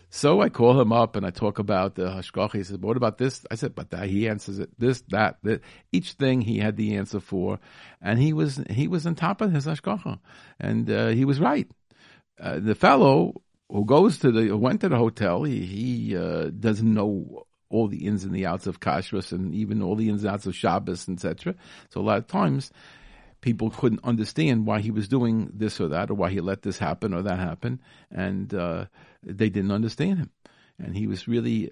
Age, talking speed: 50-69, 220 wpm